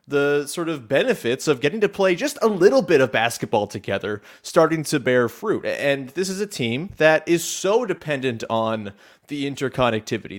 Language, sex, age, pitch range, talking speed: English, male, 30-49, 120-165 Hz, 180 wpm